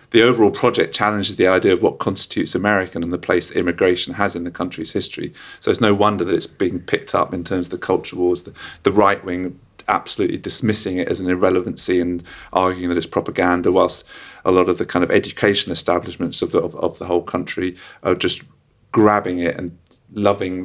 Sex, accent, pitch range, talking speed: male, British, 85-100 Hz, 210 wpm